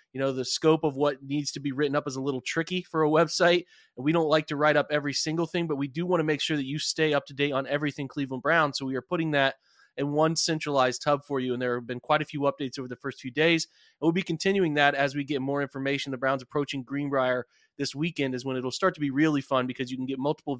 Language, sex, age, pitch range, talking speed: English, male, 20-39, 135-155 Hz, 285 wpm